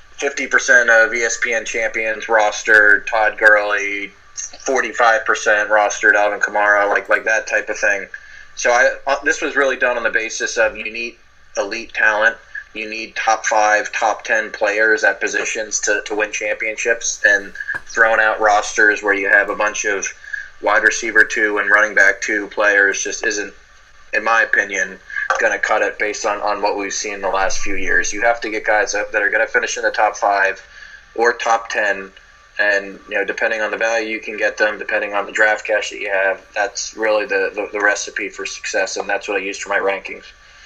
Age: 20-39